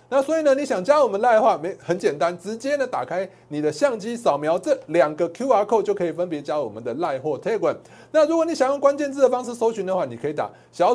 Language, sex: Chinese, male